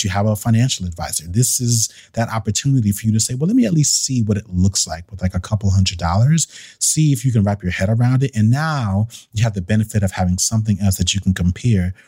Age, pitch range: 30-49, 95-120 Hz